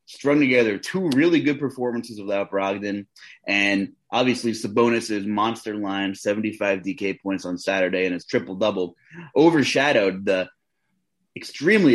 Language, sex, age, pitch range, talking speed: English, male, 30-49, 105-135 Hz, 120 wpm